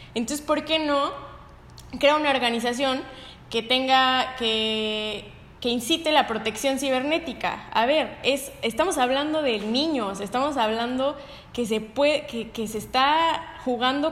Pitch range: 215-265 Hz